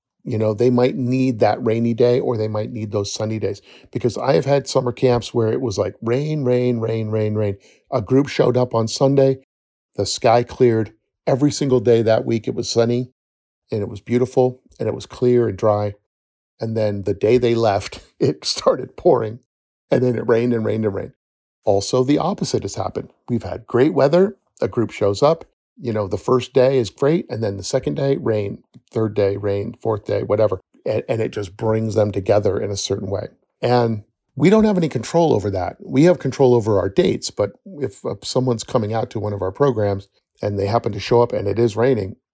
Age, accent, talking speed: 50-69, American, 215 wpm